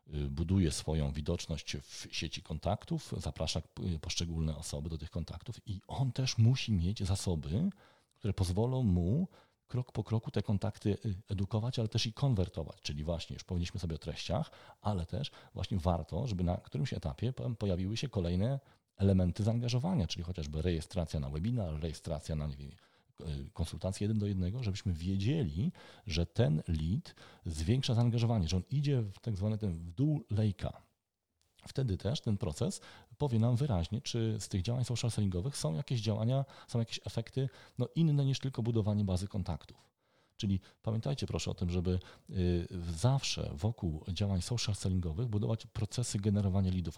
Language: Polish